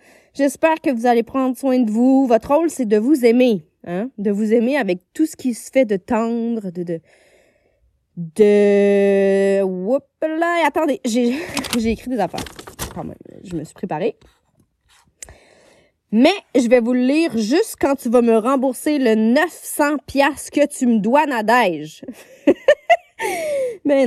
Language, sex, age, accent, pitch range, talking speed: French, female, 20-39, Canadian, 210-300 Hz, 155 wpm